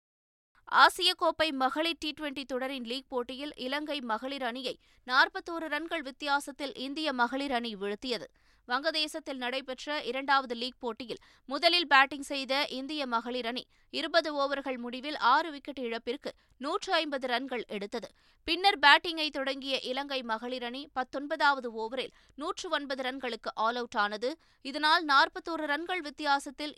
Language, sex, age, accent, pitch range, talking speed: Tamil, female, 20-39, native, 245-305 Hz, 125 wpm